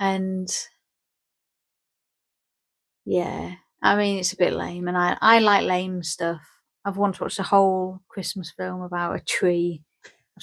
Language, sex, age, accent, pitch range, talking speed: English, female, 30-49, British, 180-215 Hz, 145 wpm